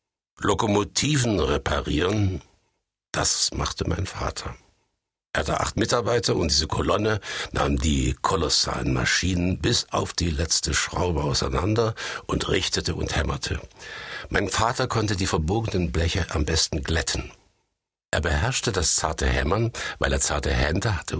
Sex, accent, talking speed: male, German, 130 wpm